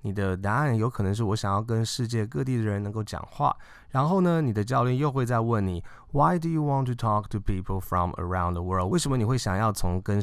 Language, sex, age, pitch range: Chinese, male, 20-39, 95-125 Hz